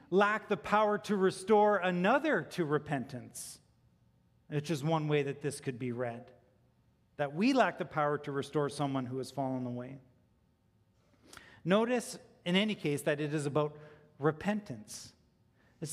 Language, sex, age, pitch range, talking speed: English, male, 40-59, 135-215 Hz, 145 wpm